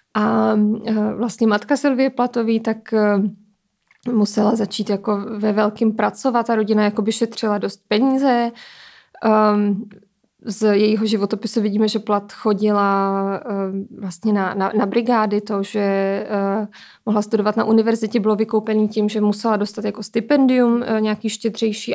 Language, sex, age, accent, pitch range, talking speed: Czech, female, 20-39, native, 210-235 Hz, 130 wpm